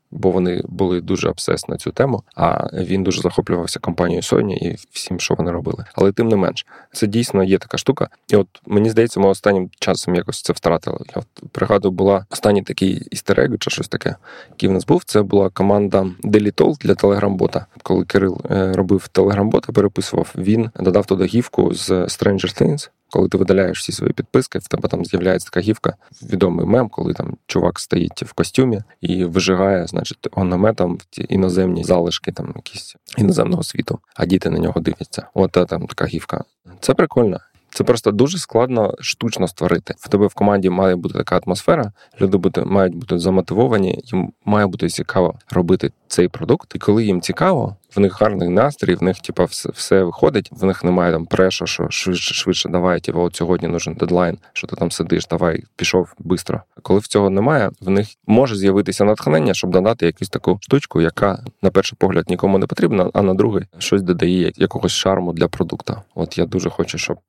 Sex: male